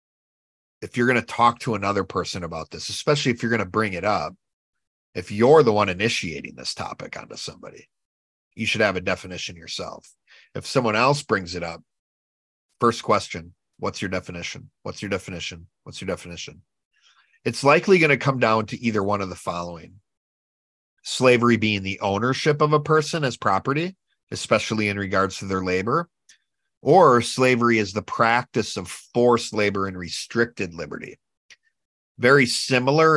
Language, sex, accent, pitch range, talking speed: English, male, American, 95-125 Hz, 165 wpm